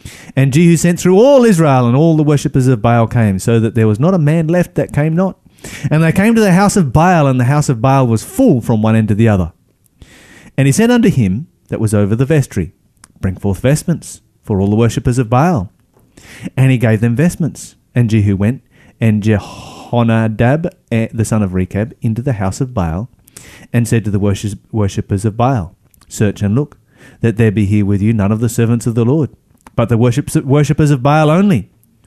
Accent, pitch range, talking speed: Australian, 110-155 Hz, 210 wpm